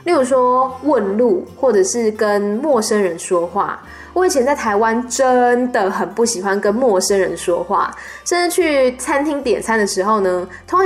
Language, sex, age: Chinese, female, 10-29